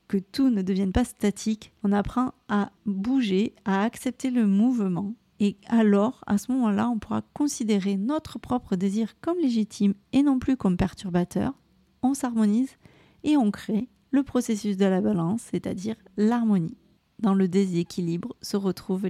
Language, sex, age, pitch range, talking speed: French, female, 30-49, 200-235 Hz, 155 wpm